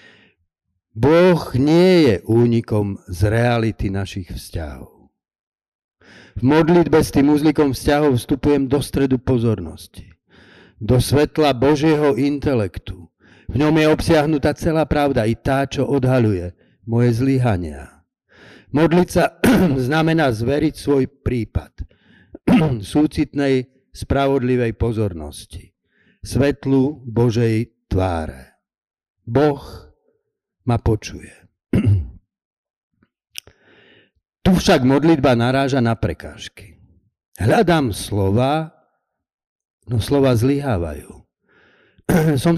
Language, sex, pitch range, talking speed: Slovak, male, 100-145 Hz, 85 wpm